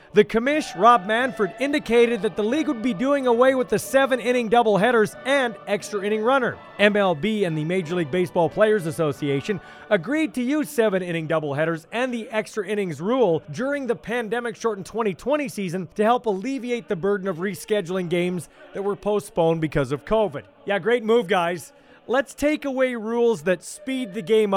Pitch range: 190-245 Hz